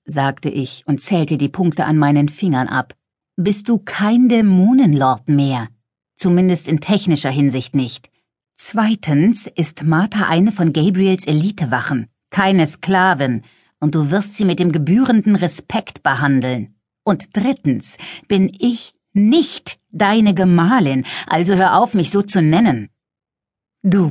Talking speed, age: 130 wpm, 50-69